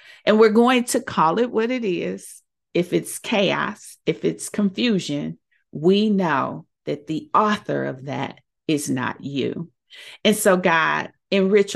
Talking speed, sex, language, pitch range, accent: 150 wpm, female, English, 165-235 Hz, American